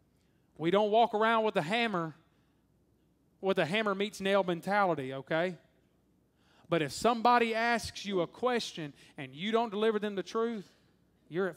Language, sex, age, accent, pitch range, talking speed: English, male, 30-49, American, 145-180 Hz, 155 wpm